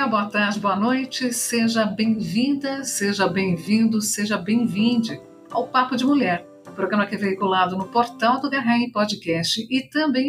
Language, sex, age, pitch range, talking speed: Portuguese, female, 50-69, 195-250 Hz, 155 wpm